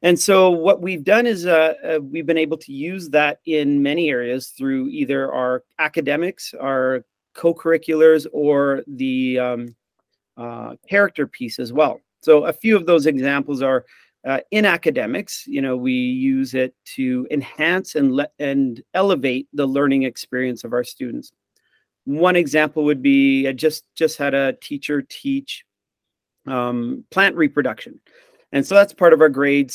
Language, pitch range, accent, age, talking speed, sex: English, 135-175 Hz, American, 40-59, 160 wpm, male